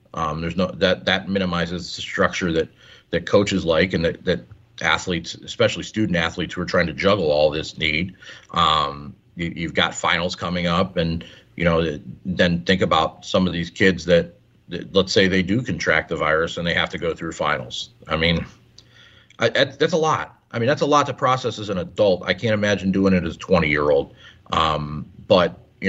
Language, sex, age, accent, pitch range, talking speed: English, male, 40-59, American, 85-105 Hz, 200 wpm